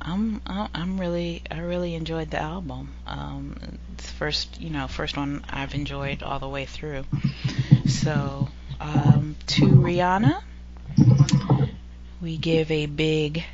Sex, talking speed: female, 130 wpm